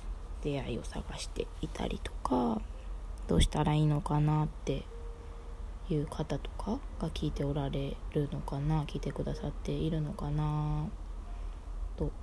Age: 20-39